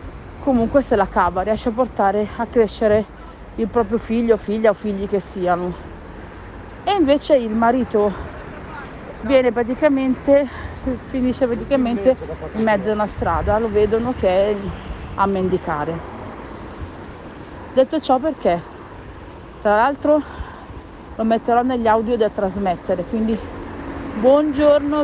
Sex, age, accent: female, 40-59, native